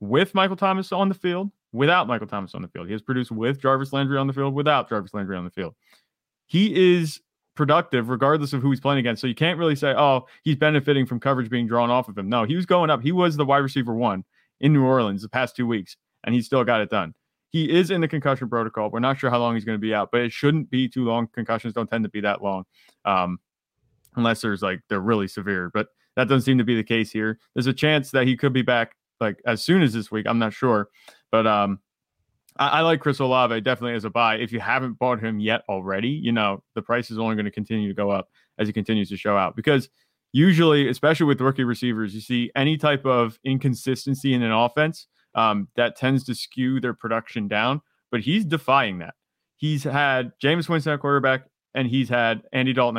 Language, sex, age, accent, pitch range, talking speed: English, male, 30-49, American, 115-140 Hz, 240 wpm